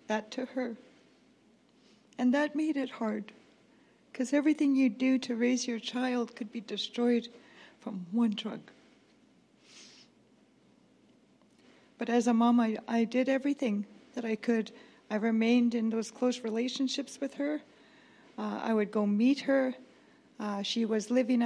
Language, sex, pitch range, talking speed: English, female, 220-255 Hz, 145 wpm